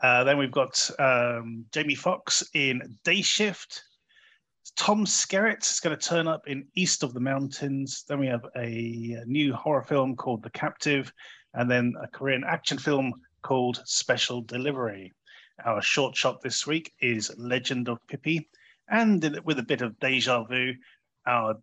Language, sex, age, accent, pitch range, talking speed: English, male, 30-49, British, 125-165 Hz, 160 wpm